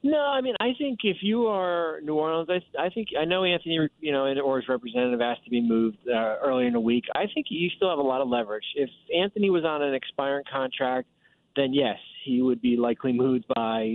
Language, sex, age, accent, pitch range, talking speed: English, male, 40-59, American, 130-160 Hz, 230 wpm